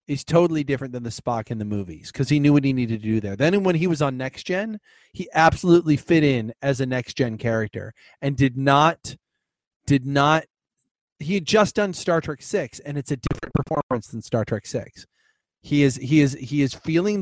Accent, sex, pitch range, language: American, male, 125-160 Hz, English